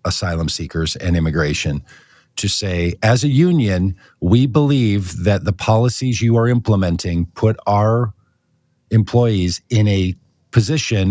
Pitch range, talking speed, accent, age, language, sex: 100-140 Hz, 125 wpm, American, 50-69, English, male